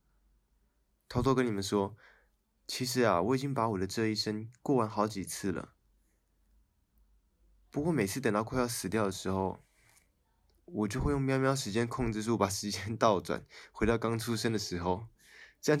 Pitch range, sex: 90-130 Hz, male